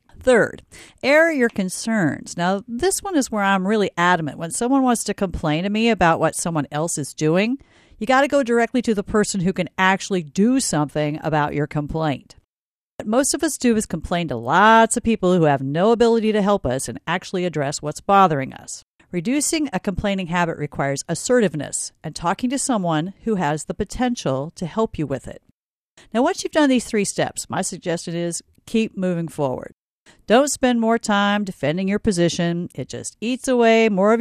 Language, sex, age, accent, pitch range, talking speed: English, female, 50-69, American, 165-225 Hz, 190 wpm